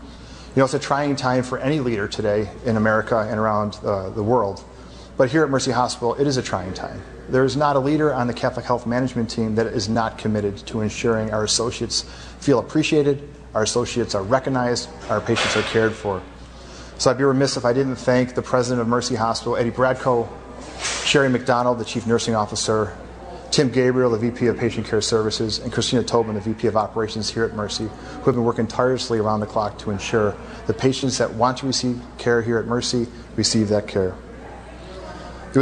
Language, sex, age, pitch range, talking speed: English, male, 30-49, 110-130 Hz, 200 wpm